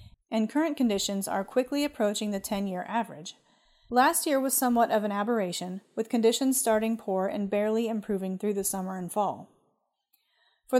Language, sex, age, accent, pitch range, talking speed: English, female, 30-49, American, 200-245 Hz, 160 wpm